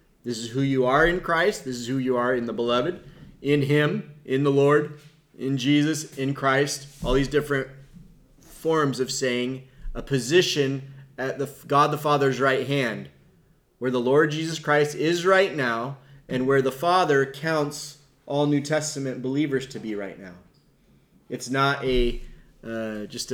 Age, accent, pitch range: 30-49, American, 125-150 Hz